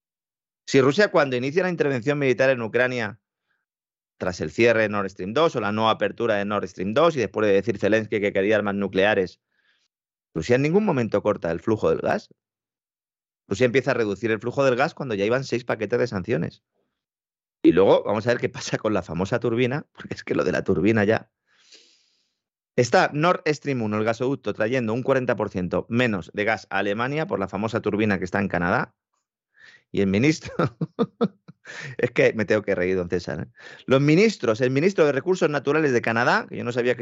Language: Spanish